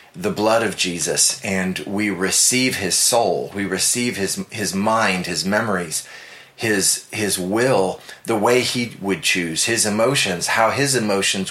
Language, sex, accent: English, male, American